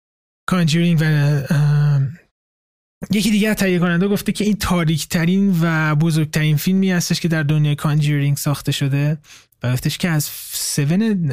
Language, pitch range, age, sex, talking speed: Persian, 135-175 Hz, 20-39, male, 145 wpm